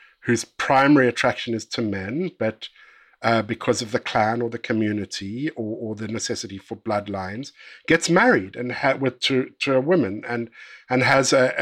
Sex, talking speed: male, 175 wpm